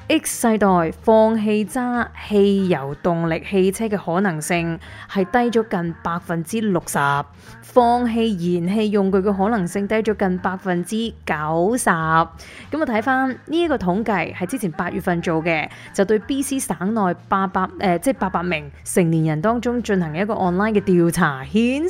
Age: 20-39